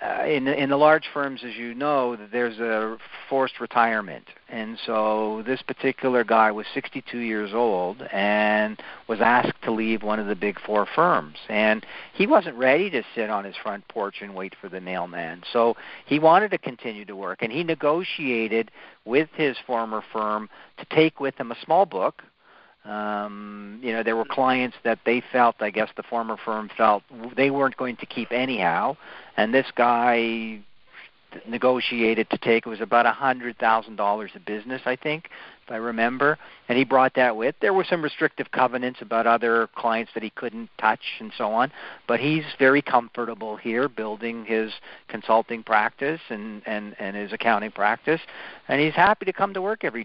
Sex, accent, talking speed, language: male, American, 185 wpm, English